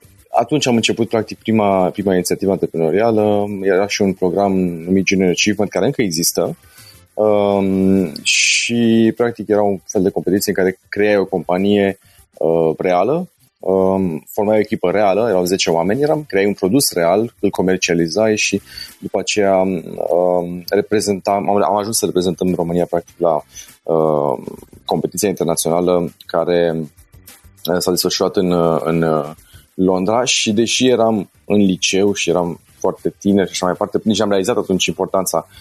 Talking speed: 150 wpm